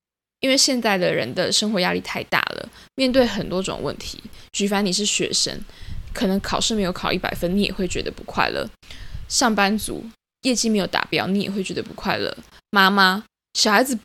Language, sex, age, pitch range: Chinese, female, 10-29, 190-260 Hz